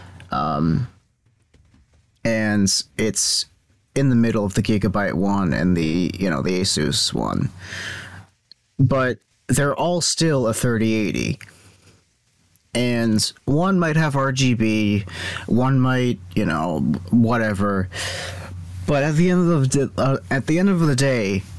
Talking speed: 130 wpm